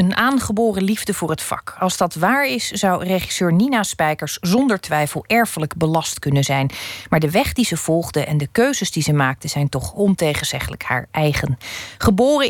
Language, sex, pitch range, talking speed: Dutch, female, 150-200 Hz, 180 wpm